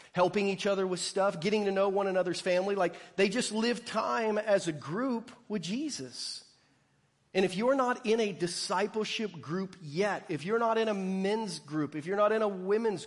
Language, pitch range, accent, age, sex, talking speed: English, 170-220 Hz, American, 40-59, male, 200 wpm